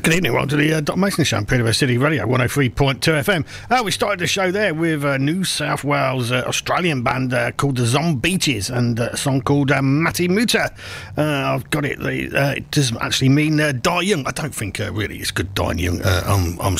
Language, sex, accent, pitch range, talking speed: English, male, British, 120-185 Hz, 240 wpm